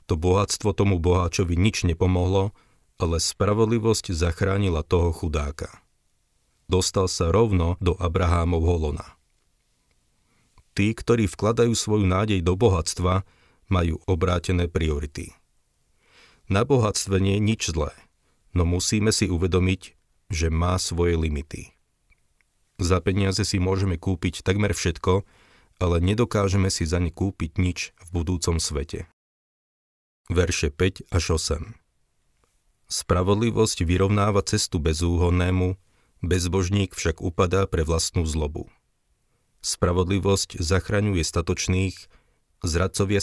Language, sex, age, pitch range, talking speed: Slovak, male, 40-59, 85-100 Hz, 105 wpm